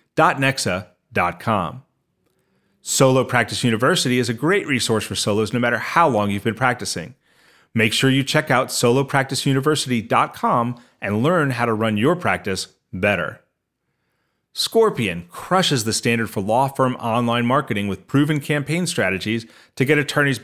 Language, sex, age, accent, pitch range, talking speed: English, male, 40-59, American, 110-140 Hz, 140 wpm